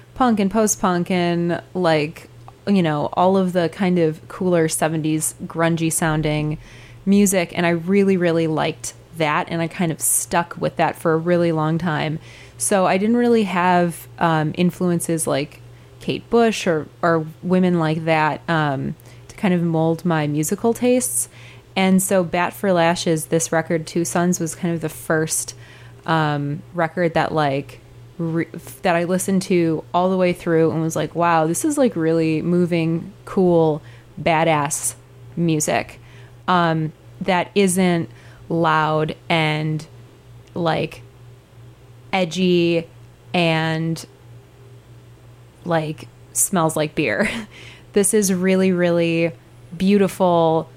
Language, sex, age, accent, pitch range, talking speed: English, female, 20-39, American, 130-175 Hz, 135 wpm